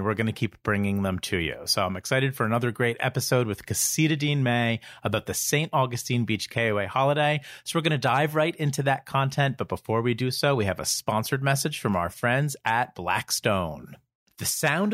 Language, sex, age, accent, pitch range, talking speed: English, male, 40-59, American, 115-165 Hz, 210 wpm